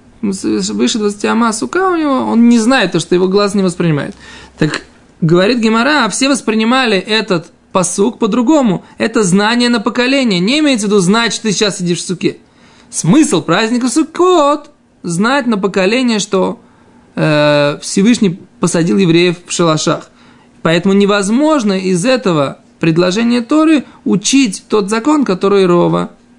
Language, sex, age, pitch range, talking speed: Russian, male, 20-39, 165-235 Hz, 145 wpm